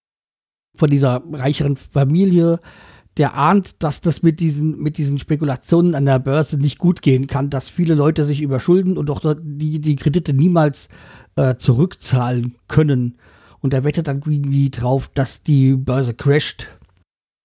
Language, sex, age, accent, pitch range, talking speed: German, male, 50-69, German, 130-160 Hz, 150 wpm